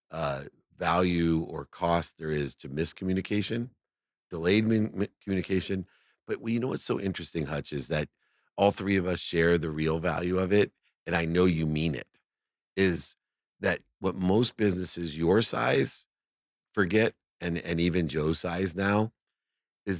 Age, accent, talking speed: 50-69, American, 155 wpm